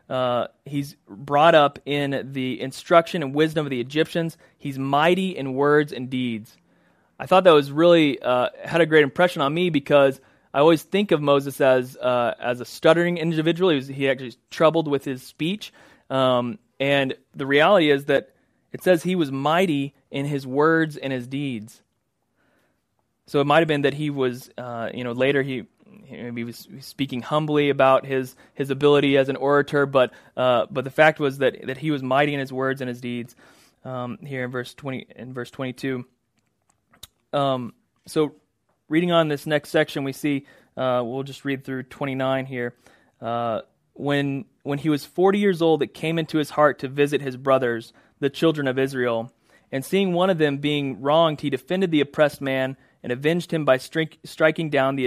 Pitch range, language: 130-155 Hz, English